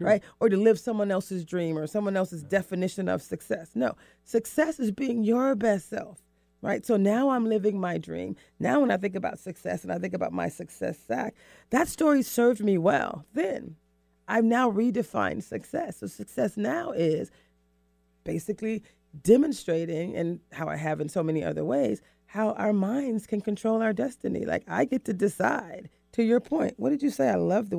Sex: female